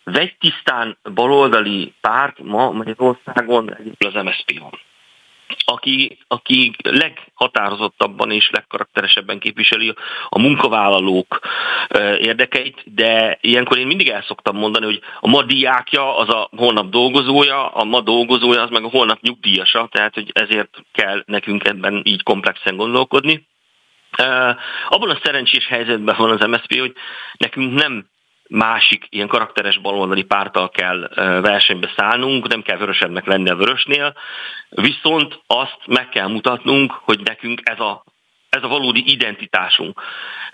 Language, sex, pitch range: Hungarian, male, 105-140 Hz